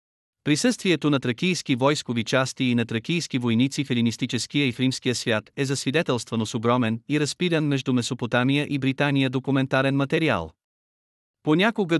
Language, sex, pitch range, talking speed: Bulgarian, male, 120-150 Hz, 140 wpm